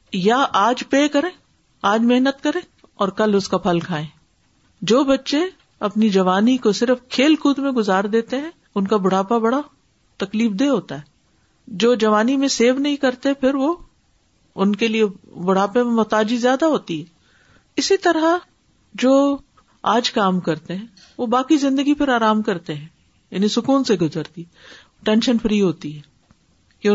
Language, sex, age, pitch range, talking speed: Urdu, female, 50-69, 190-265 Hz, 165 wpm